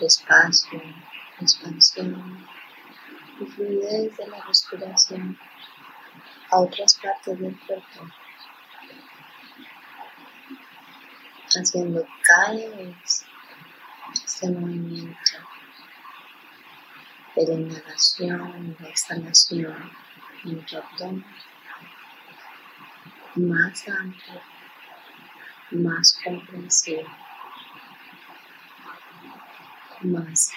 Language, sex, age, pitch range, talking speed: Spanish, female, 20-39, 165-210 Hz, 60 wpm